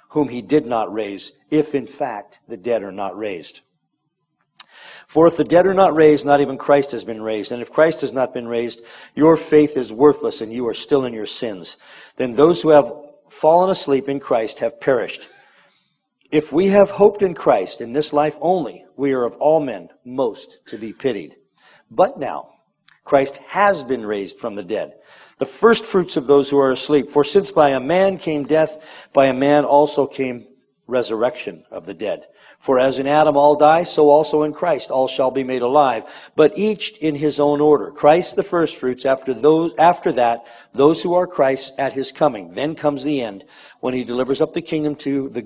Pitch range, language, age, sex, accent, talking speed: 130-155 Hz, English, 50-69, male, American, 205 wpm